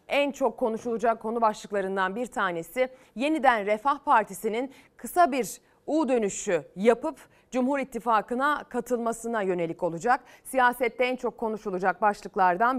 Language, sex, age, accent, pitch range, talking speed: Turkish, female, 30-49, native, 210-295 Hz, 115 wpm